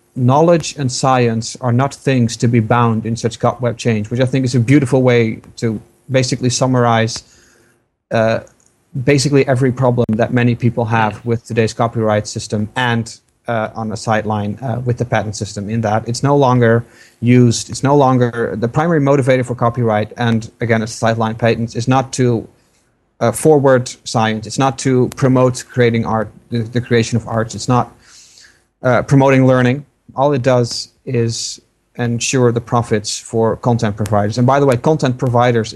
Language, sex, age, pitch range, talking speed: English, male, 30-49, 115-125 Hz, 170 wpm